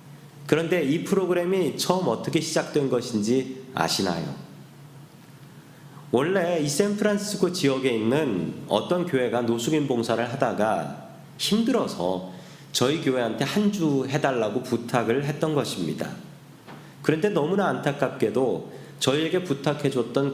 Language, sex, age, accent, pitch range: Korean, male, 40-59, native, 120-155 Hz